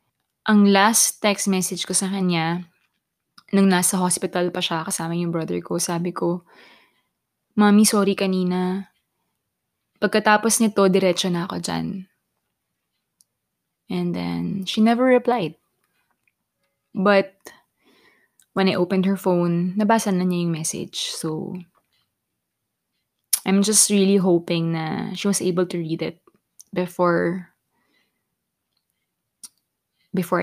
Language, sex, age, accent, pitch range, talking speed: Filipino, female, 20-39, native, 175-205 Hz, 115 wpm